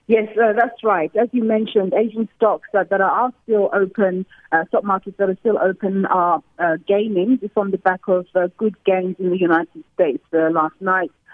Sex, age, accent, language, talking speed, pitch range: female, 30-49, British, English, 205 wpm, 175-215 Hz